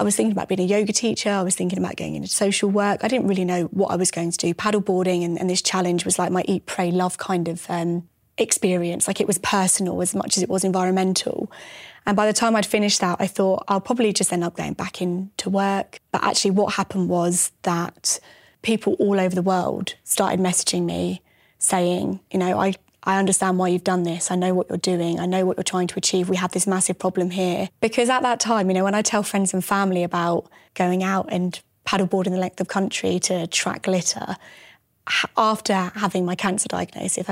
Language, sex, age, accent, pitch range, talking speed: English, female, 10-29, British, 180-195 Hz, 225 wpm